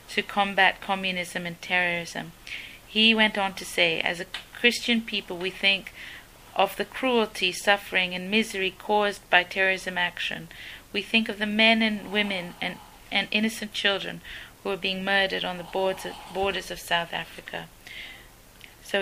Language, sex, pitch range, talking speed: English, female, 175-205 Hz, 155 wpm